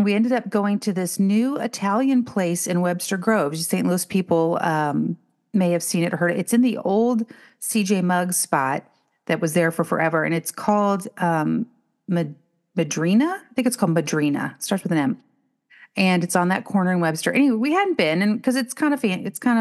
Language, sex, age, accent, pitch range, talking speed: English, female, 40-59, American, 160-215 Hz, 210 wpm